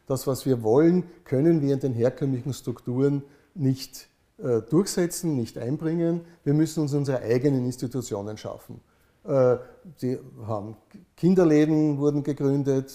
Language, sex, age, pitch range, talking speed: German, male, 60-79, 120-150 Hz, 125 wpm